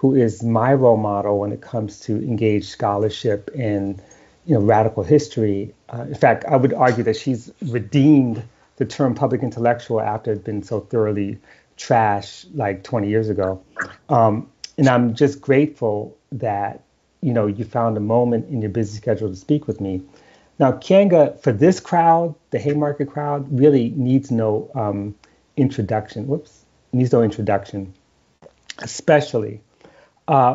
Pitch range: 110-130 Hz